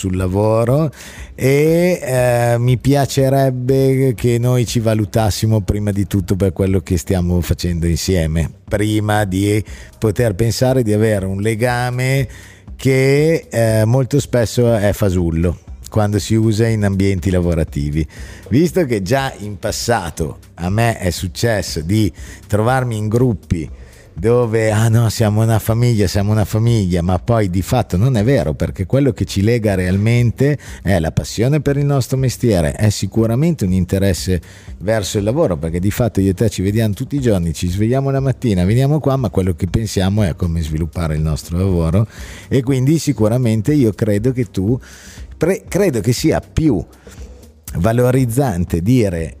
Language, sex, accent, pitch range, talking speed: Italian, male, native, 95-125 Hz, 155 wpm